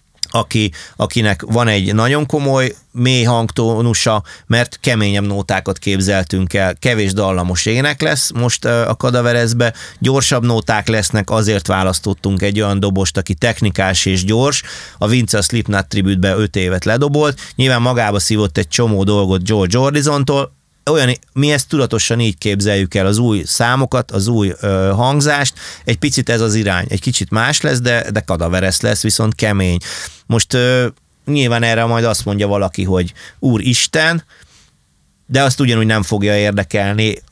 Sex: male